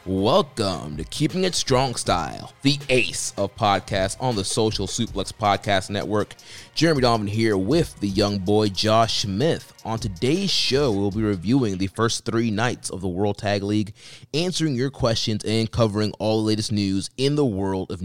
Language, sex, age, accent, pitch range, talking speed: English, male, 30-49, American, 100-115 Hz, 175 wpm